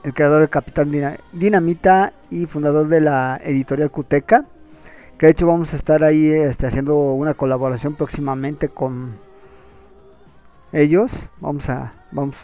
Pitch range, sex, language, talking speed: 140-180 Hz, male, Spanish, 135 wpm